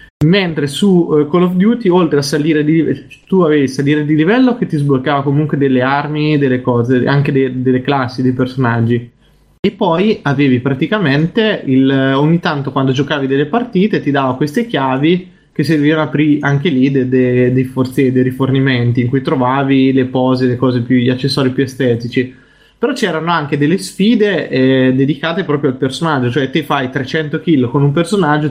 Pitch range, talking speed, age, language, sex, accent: 130-155 Hz, 180 wpm, 20-39, Italian, male, native